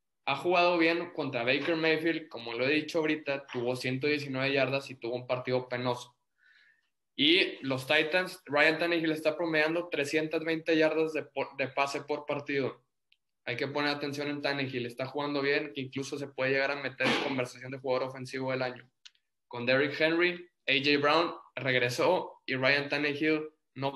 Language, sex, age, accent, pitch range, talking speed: Spanish, male, 20-39, Mexican, 130-160 Hz, 165 wpm